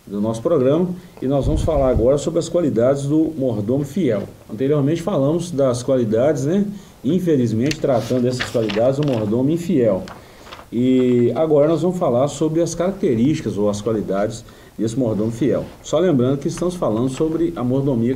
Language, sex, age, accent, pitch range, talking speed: Portuguese, male, 40-59, Brazilian, 115-170 Hz, 160 wpm